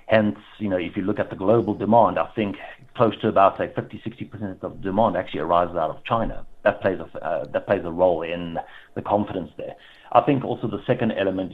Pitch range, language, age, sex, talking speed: 95-110 Hz, English, 50-69, male, 220 wpm